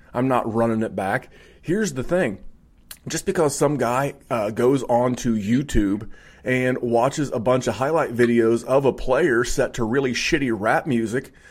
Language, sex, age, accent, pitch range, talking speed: English, male, 30-49, American, 115-165 Hz, 170 wpm